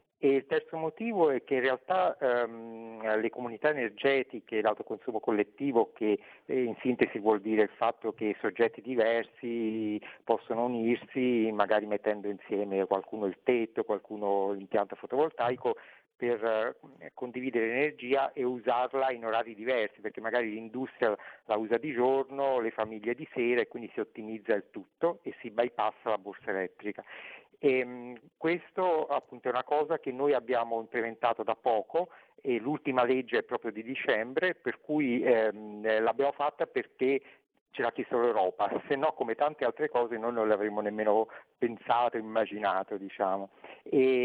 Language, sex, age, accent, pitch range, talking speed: Italian, male, 50-69, native, 110-130 Hz, 150 wpm